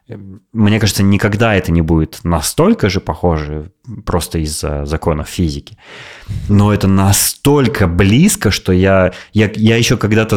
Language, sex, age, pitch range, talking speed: Russian, male, 20-39, 90-110 Hz, 125 wpm